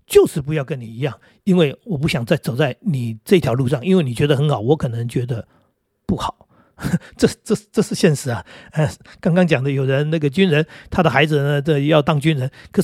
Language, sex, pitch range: Chinese, male, 145-190 Hz